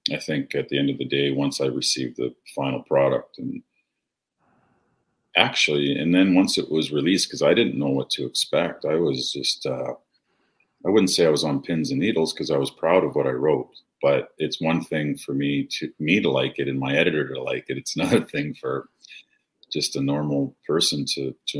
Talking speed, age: 215 wpm, 40-59